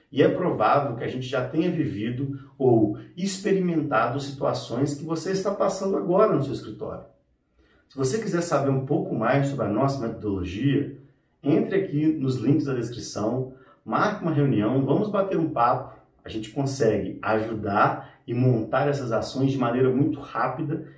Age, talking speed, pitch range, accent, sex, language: 40-59, 160 wpm, 115-150 Hz, Brazilian, male, Portuguese